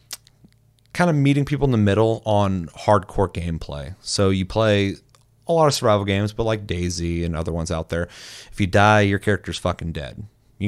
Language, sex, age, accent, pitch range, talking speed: English, male, 30-49, American, 90-110 Hz, 190 wpm